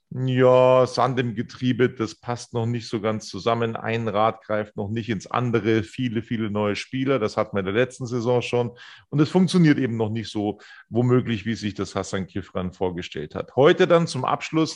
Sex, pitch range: male, 120-155 Hz